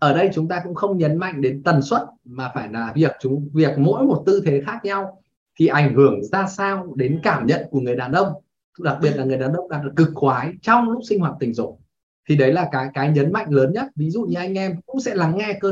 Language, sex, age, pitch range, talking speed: Vietnamese, male, 20-39, 140-195 Hz, 265 wpm